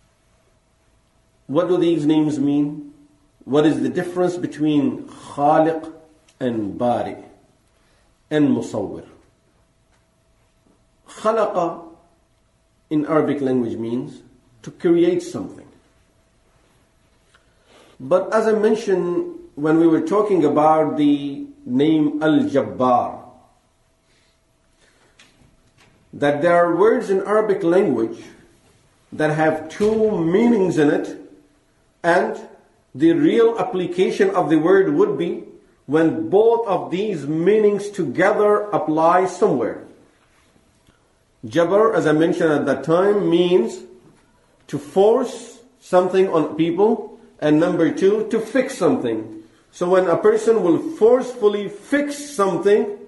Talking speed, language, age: 105 wpm, English, 50-69